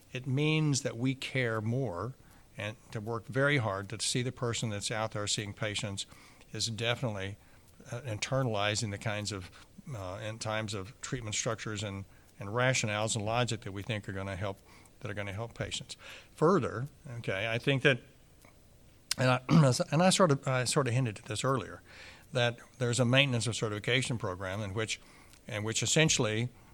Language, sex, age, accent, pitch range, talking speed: English, male, 60-79, American, 105-125 Hz, 180 wpm